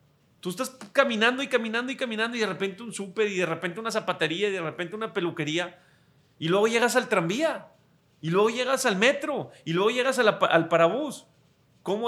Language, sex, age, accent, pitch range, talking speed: Spanish, male, 40-59, Mexican, 140-185 Hz, 200 wpm